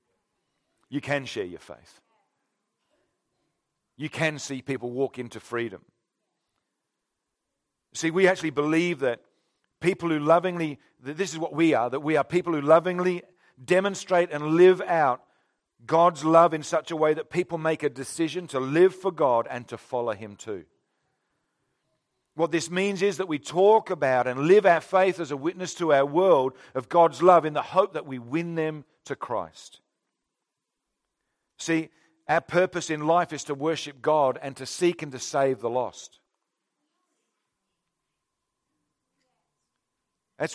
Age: 50-69